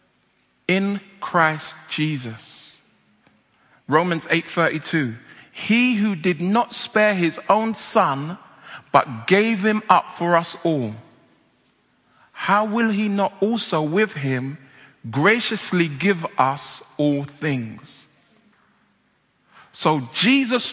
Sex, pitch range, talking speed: male, 165-225 Hz, 100 wpm